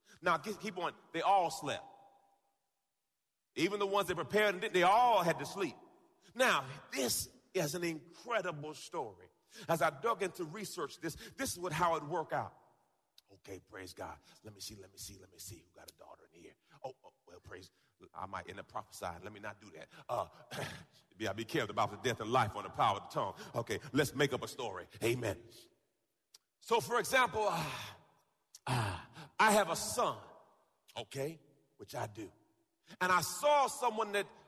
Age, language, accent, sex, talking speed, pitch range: 40-59, English, American, male, 185 wpm, 155-230 Hz